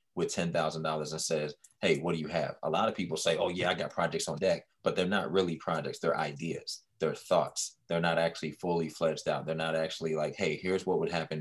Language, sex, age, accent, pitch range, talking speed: English, male, 20-39, American, 80-100 Hz, 235 wpm